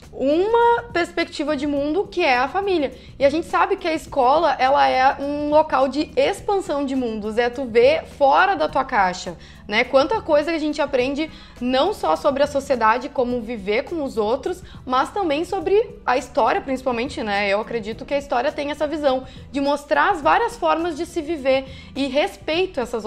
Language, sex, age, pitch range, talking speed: Portuguese, female, 20-39, 220-290 Hz, 190 wpm